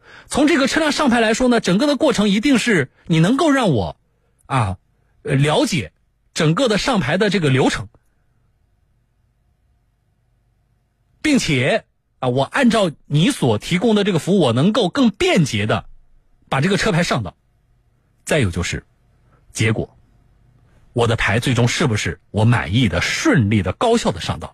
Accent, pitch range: native, 120-190 Hz